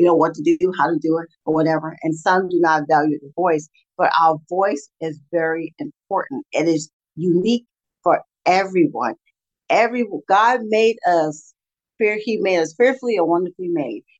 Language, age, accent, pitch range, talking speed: English, 50-69, American, 165-230 Hz, 170 wpm